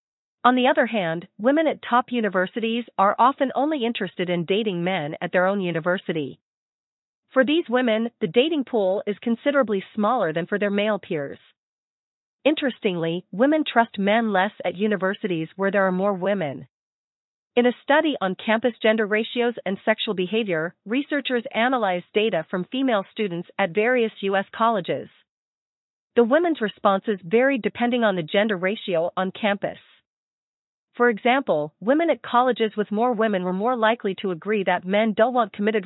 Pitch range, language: 190-240 Hz, English